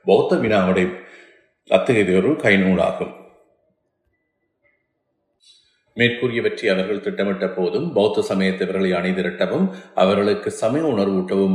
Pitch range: 90-100 Hz